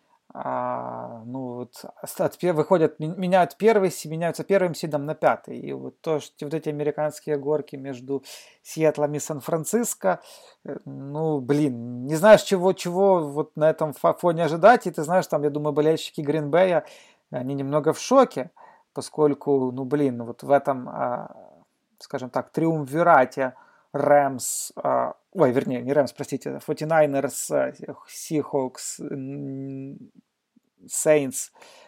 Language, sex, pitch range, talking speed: Russian, male, 140-170 Hz, 115 wpm